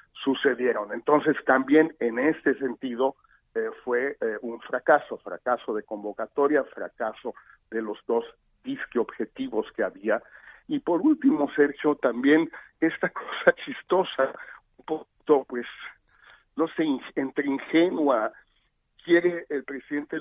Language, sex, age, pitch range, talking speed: Spanish, male, 50-69, 120-155 Hz, 120 wpm